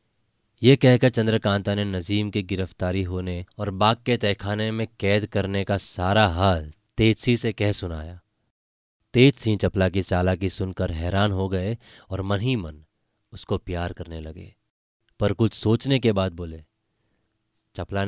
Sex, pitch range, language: male, 95-115 Hz, Hindi